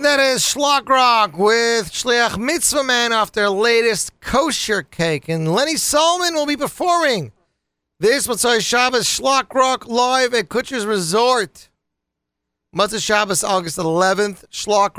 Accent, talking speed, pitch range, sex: American, 130 wpm, 150-230 Hz, male